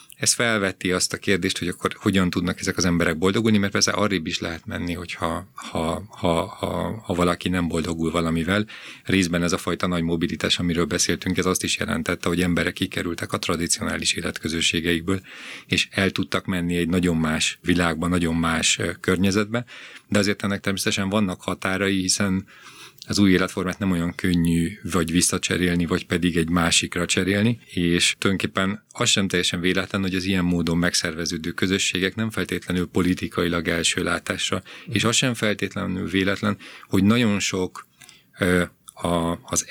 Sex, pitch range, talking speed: male, 85-100 Hz, 155 wpm